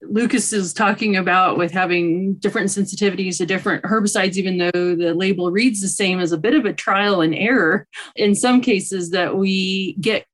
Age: 30-49